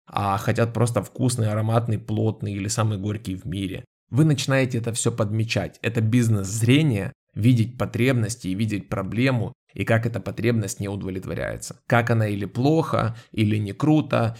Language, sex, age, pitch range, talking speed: Ukrainian, male, 20-39, 100-125 Hz, 150 wpm